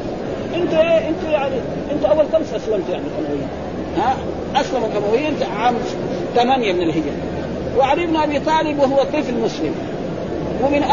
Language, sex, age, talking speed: Arabic, male, 40-59, 135 wpm